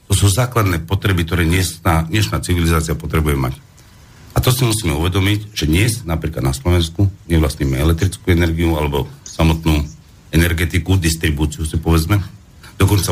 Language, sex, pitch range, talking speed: Slovak, male, 80-105 Hz, 135 wpm